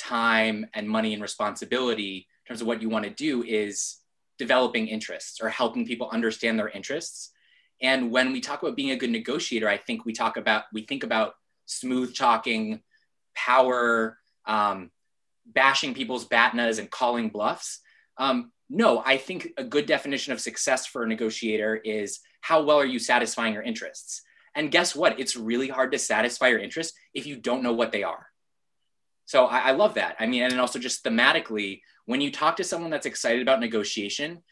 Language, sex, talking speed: English, male, 185 wpm